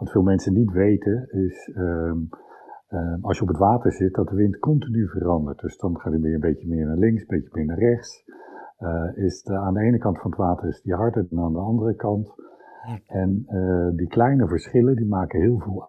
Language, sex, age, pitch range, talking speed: Dutch, male, 50-69, 90-110 Hz, 220 wpm